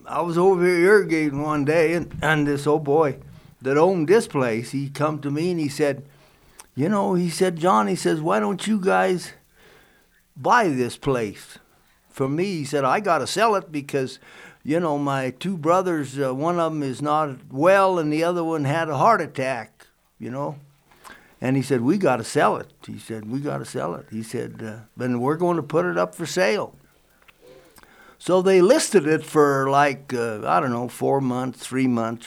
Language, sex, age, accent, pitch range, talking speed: English, male, 60-79, American, 135-185 Hz, 205 wpm